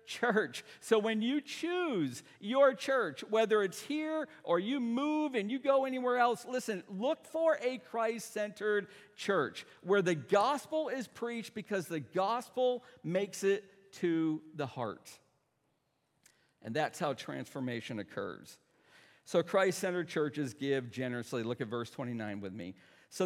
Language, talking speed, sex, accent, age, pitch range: English, 140 wpm, male, American, 50-69, 140-220 Hz